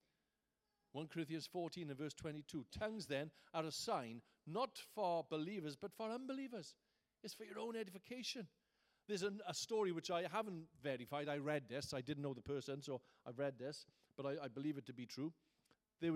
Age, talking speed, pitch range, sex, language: 50-69, 185 wpm, 145-190 Hz, male, English